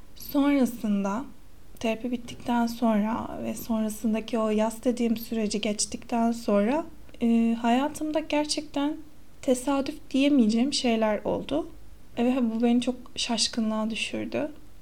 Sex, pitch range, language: female, 215-255 Hz, Turkish